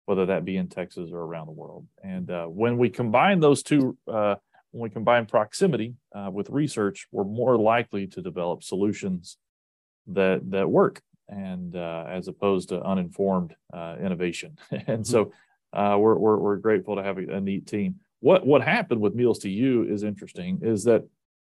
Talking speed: 180 wpm